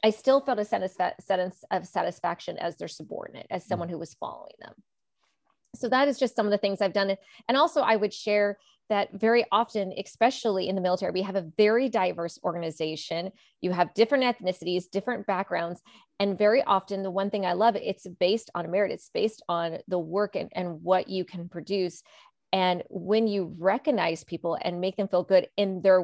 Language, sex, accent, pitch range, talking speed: English, female, American, 180-225 Hz, 195 wpm